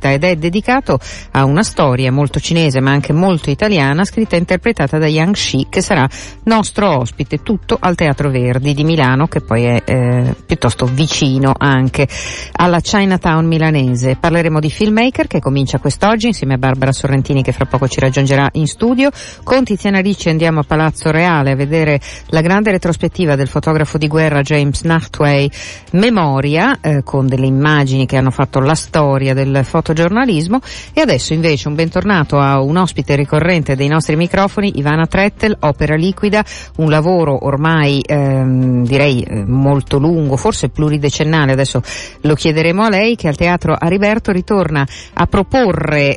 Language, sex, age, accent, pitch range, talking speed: Italian, female, 50-69, native, 135-175 Hz, 160 wpm